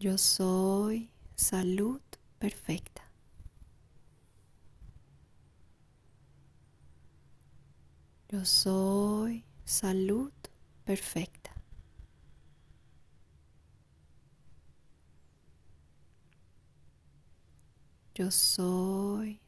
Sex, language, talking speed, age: female, Spanish, 30 wpm, 30-49